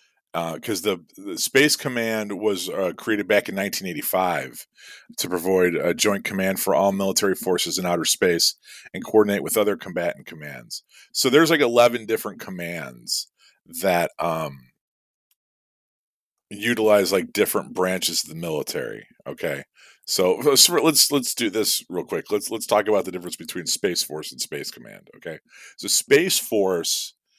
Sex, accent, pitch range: male, American, 90-115 Hz